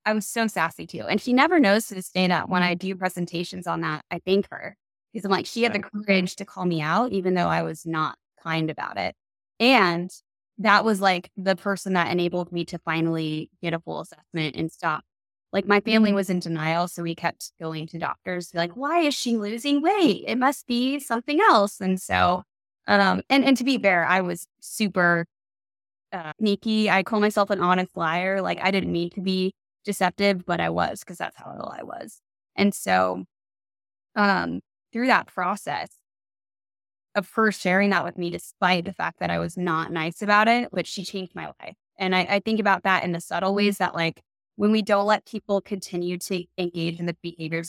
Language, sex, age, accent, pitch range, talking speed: English, female, 20-39, American, 175-215 Hz, 210 wpm